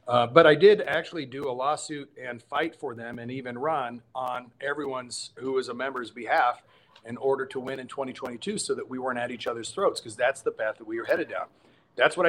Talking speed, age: 230 wpm, 40-59